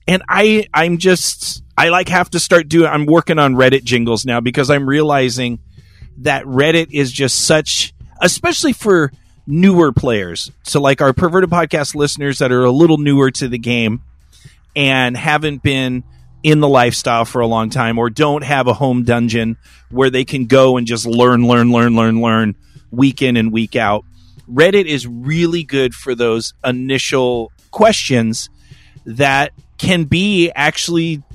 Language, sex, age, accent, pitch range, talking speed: English, male, 30-49, American, 120-155 Hz, 165 wpm